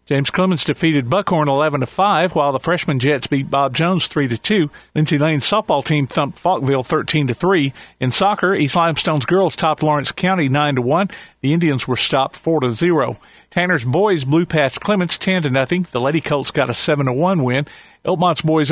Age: 50-69